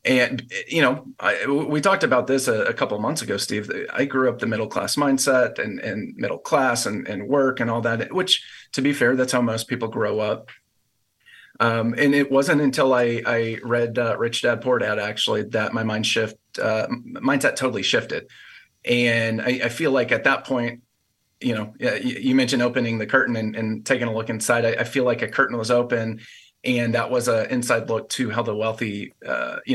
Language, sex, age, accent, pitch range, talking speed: English, male, 30-49, American, 115-135 Hz, 210 wpm